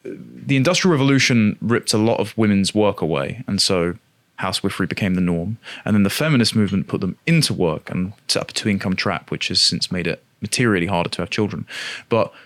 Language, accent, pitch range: English, British, 95-130 Hz